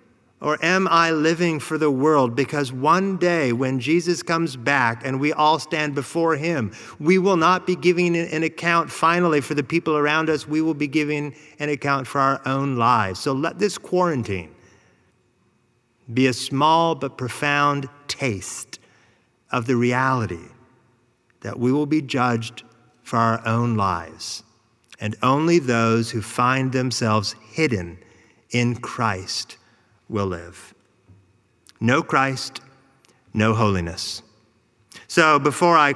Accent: American